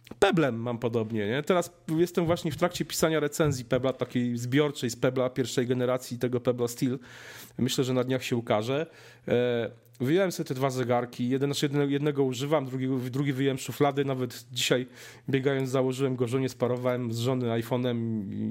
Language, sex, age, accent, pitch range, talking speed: Polish, male, 40-59, native, 125-155 Hz, 160 wpm